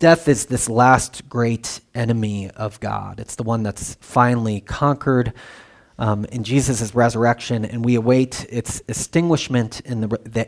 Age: 30-49